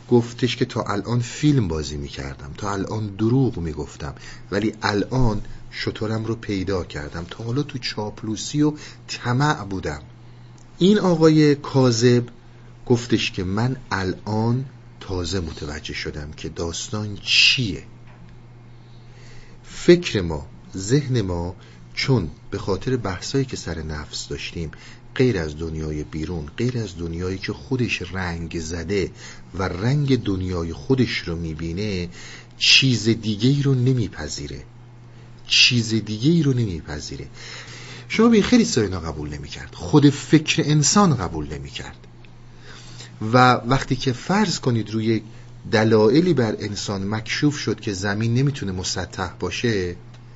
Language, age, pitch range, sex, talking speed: Persian, 50-69, 90-125 Hz, male, 125 wpm